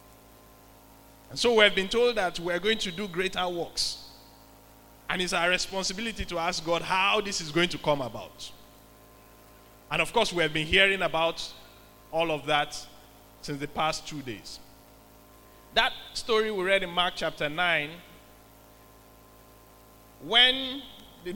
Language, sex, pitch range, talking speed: English, male, 115-195 Hz, 150 wpm